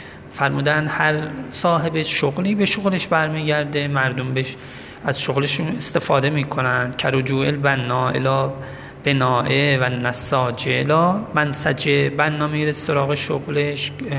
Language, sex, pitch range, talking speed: Persian, male, 130-150 Hz, 95 wpm